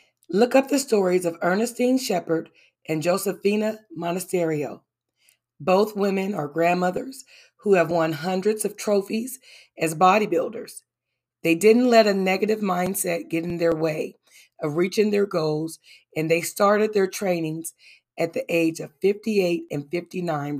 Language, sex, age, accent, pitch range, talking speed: English, female, 40-59, American, 160-205 Hz, 140 wpm